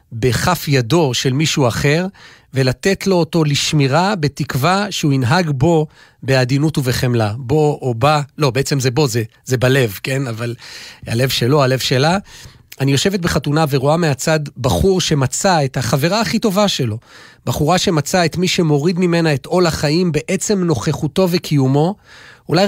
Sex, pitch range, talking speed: male, 135-180 Hz, 150 wpm